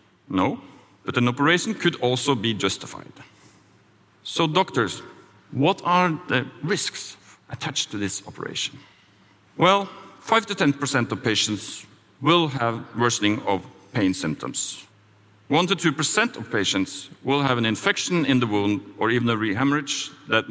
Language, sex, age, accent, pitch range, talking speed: English, male, 50-69, Norwegian, 105-150 Hz, 140 wpm